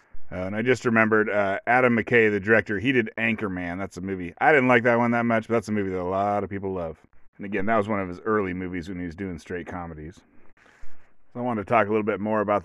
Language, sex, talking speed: English, male, 275 wpm